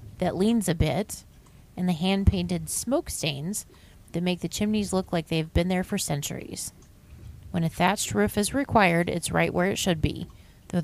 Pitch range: 170-205 Hz